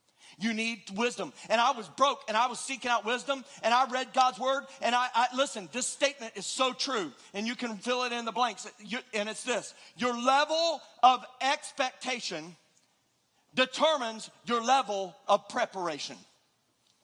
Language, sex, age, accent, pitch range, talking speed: English, male, 40-59, American, 220-285 Hz, 165 wpm